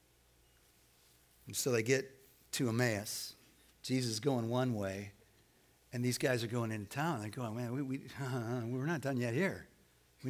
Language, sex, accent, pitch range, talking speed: English, male, American, 110-160 Hz, 170 wpm